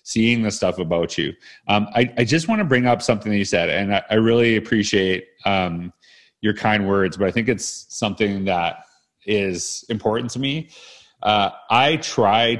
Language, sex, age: English, male, 30-49